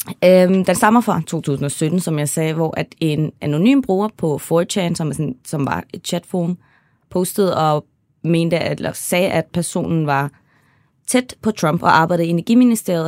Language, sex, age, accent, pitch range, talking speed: Danish, female, 20-39, native, 150-185 Hz, 155 wpm